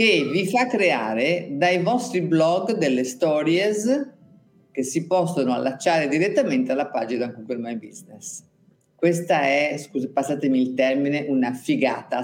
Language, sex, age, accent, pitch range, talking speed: Italian, female, 50-69, native, 140-205 Hz, 130 wpm